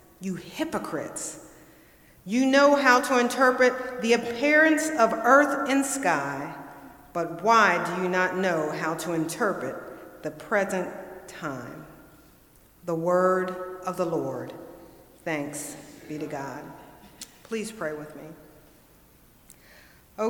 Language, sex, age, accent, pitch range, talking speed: English, female, 50-69, American, 155-230 Hz, 115 wpm